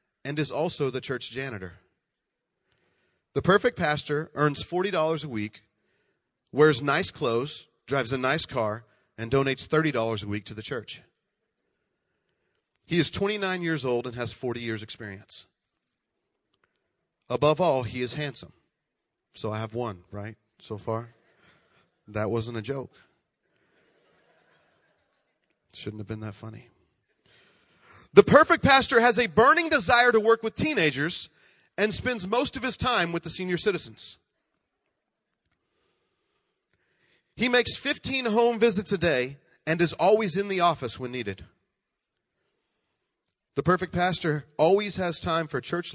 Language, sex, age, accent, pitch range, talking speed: English, male, 30-49, American, 115-185 Hz, 135 wpm